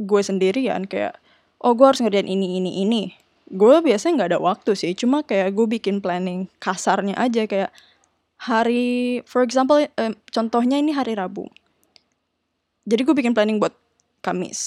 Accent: native